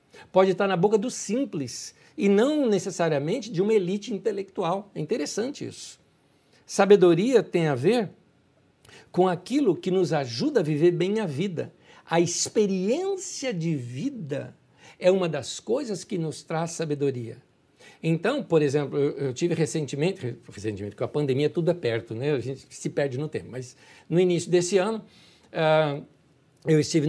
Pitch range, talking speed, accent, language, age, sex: 150-220 Hz, 155 wpm, Brazilian, Portuguese, 60-79, male